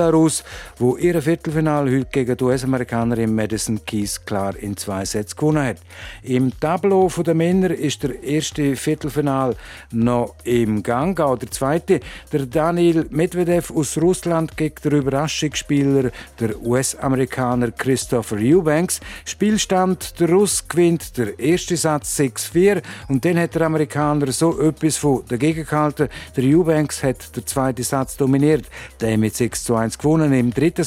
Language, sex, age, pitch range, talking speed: German, male, 50-69, 120-160 Hz, 140 wpm